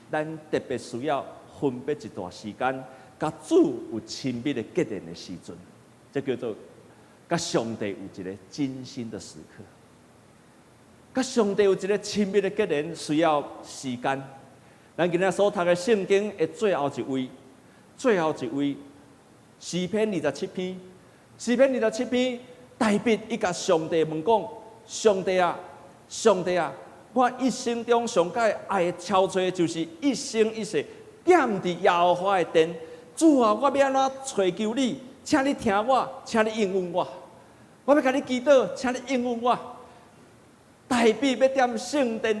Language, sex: Chinese, male